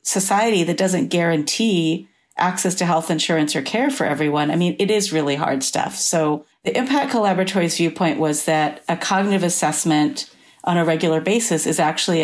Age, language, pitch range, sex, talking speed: 40-59, English, 155-180 Hz, female, 170 wpm